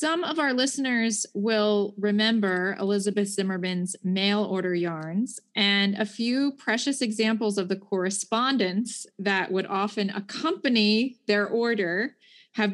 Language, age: English, 20-39